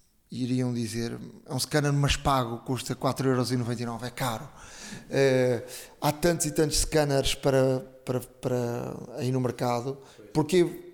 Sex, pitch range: male, 130-155 Hz